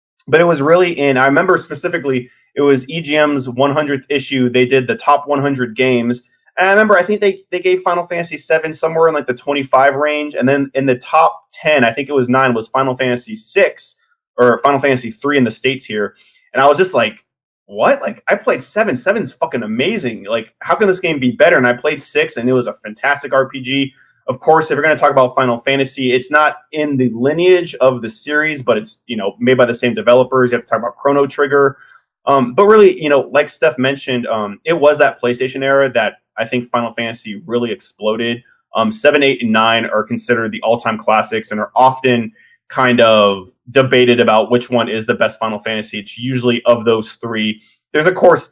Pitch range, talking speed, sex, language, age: 120-150 Hz, 220 wpm, male, English, 20-39